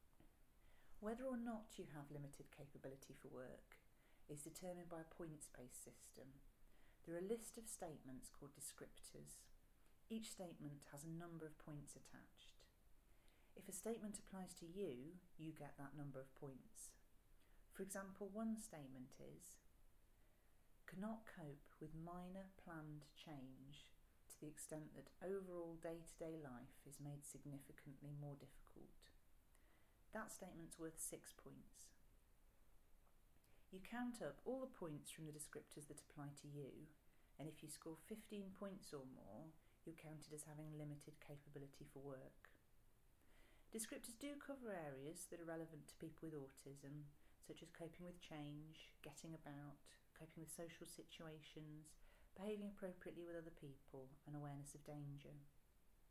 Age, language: 40-59, English